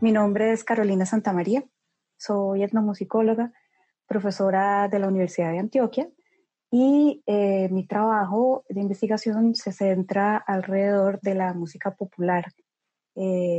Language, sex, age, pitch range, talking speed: Spanish, female, 20-39, 185-225 Hz, 120 wpm